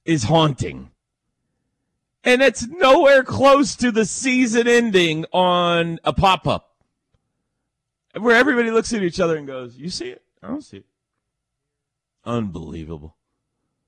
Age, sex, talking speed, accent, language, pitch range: 40-59, male, 125 wpm, American, English, 115-195 Hz